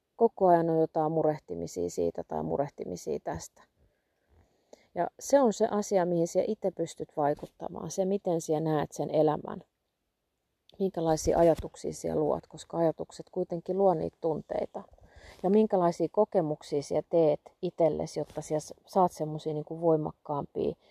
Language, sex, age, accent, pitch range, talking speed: Finnish, female, 30-49, native, 155-200 Hz, 130 wpm